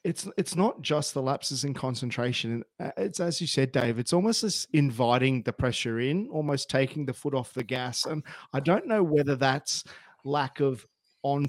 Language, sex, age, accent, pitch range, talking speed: English, male, 30-49, Australian, 130-150 Hz, 190 wpm